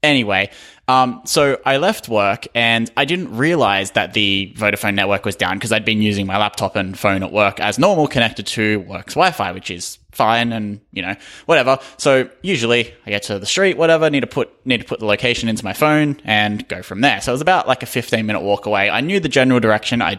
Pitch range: 100-125 Hz